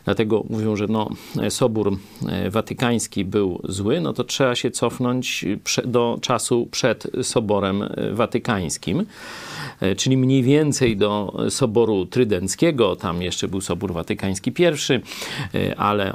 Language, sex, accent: Polish, male, native